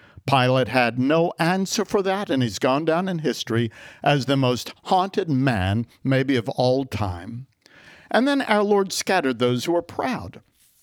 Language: English